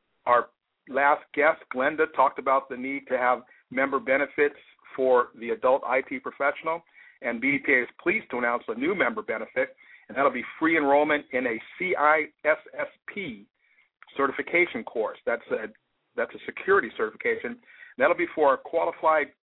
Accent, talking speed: American, 150 wpm